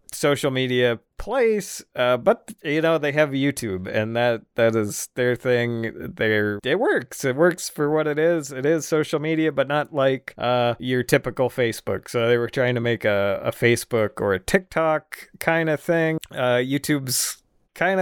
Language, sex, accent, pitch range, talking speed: English, male, American, 120-160 Hz, 180 wpm